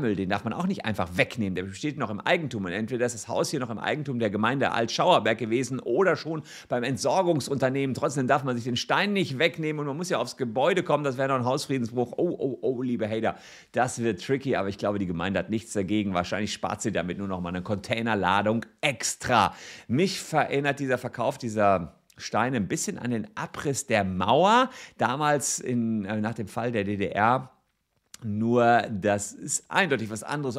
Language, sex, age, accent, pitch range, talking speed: German, male, 50-69, German, 110-140 Hz, 200 wpm